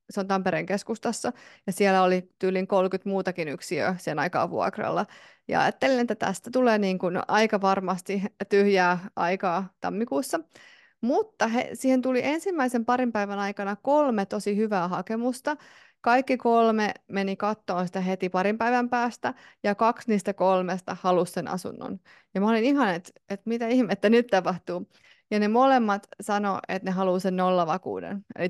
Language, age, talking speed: Finnish, 30-49, 155 wpm